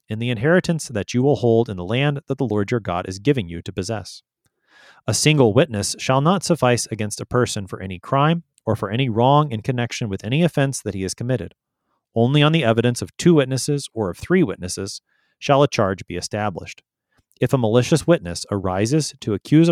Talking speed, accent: 205 wpm, American